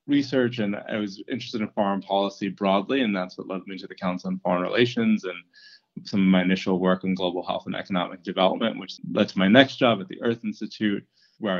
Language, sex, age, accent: English, male, 20-39, American